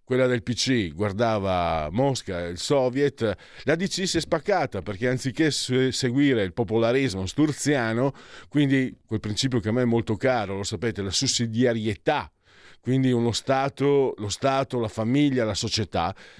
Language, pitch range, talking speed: Italian, 105-135 Hz, 150 wpm